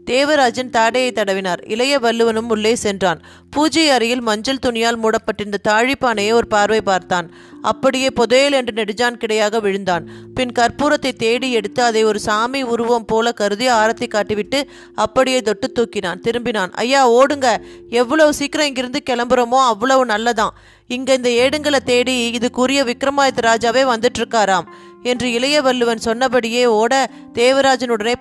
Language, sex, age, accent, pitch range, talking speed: Tamil, female, 30-49, native, 215-255 Hz, 130 wpm